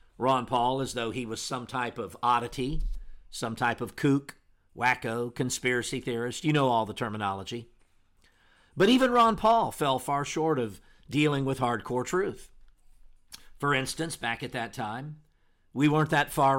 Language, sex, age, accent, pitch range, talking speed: English, male, 50-69, American, 115-140 Hz, 160 wpm